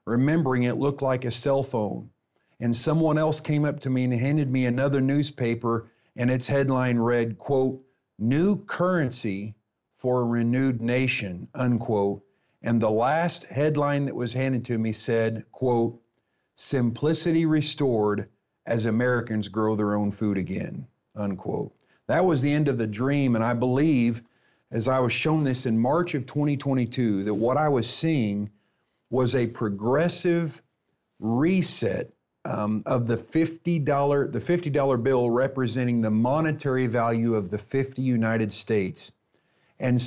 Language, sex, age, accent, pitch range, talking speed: English, male, 50-69, American, 115-145 Hz, 145 wpm